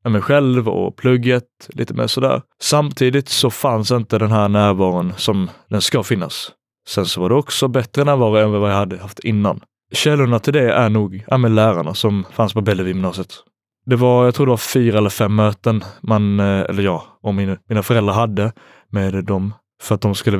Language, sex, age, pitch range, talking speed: Swedish, male, 20-39, 100-120 Hz, 195 wpm